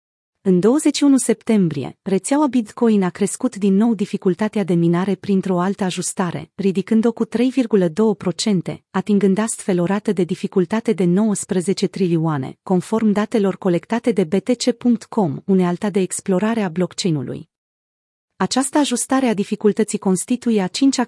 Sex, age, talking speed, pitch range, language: female, 30-49, 125 wpm, 185-220 Hz, Romanian